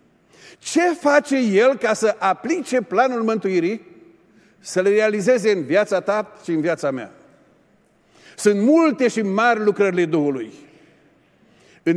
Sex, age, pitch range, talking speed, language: male, 50-69, 170-220 Hz, 125 wpm, Romanian